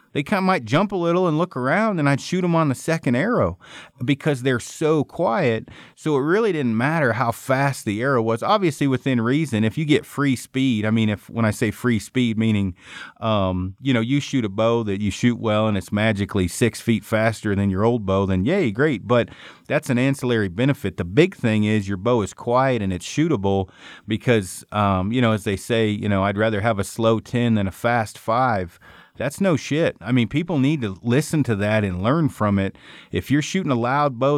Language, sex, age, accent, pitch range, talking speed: English, male, 40-59, American, 105-140 Hz, 225 wpm